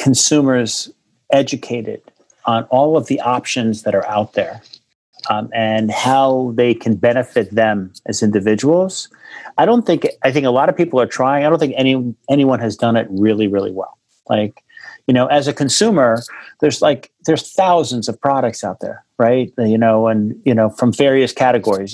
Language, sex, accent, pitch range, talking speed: English, male, American, 115-145 Hz, 180 wpm